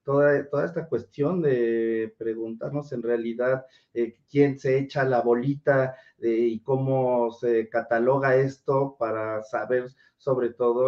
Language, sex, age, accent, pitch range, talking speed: Spanish, male, 40-59, Mexican, 125-150 Hz, 125 wpm